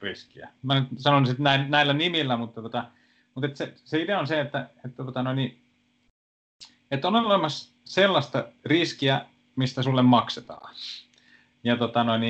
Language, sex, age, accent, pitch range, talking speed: Finnish, male, 30-49, native, 120-150 Hz, 145 wpm